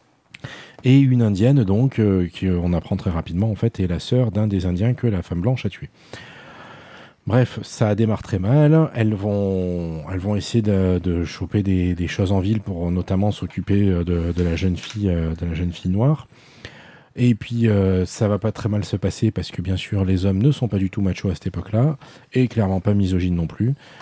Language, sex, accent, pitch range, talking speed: French, male, French, 90-115 Hz, 220 wpm